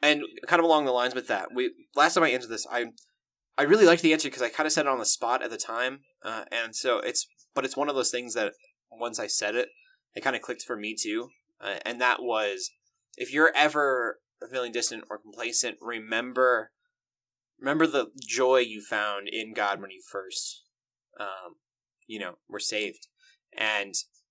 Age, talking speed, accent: 20-39, 200 wpm, American